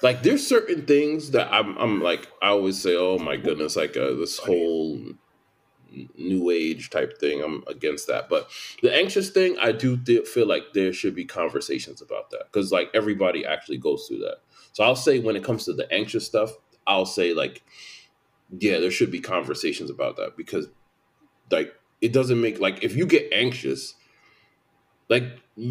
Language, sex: English, male